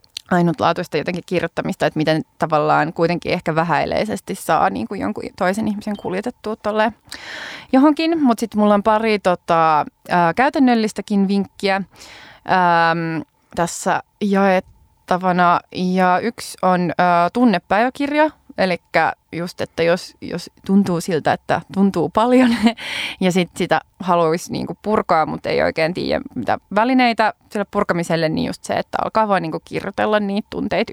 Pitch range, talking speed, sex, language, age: 170-215 Hz, 130 wpm, female, Finnish, 20-39